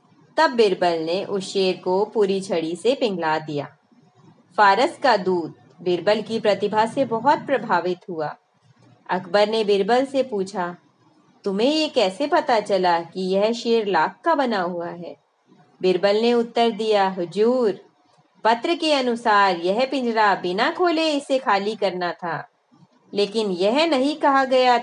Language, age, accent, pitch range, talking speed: Hindi, 30-49, native, 185-240 Hz, 140 wpm